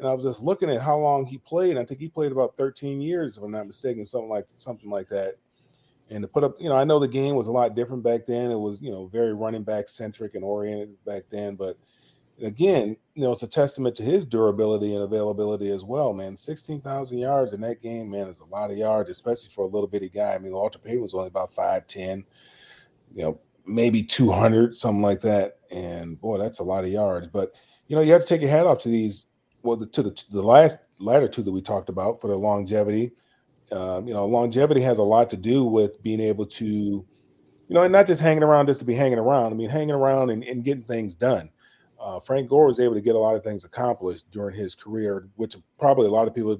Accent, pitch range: American, 105-135 Hz